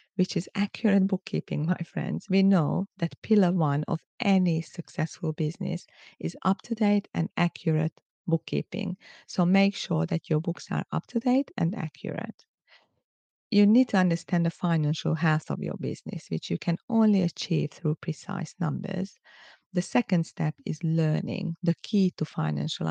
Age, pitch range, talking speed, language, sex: 40-59, 155-195 Hz, 150 wpm, English, female